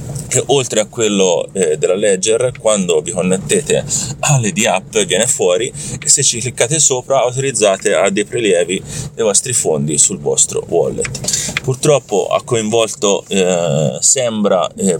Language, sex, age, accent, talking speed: Italian, male, 30-49, native, 140 wpm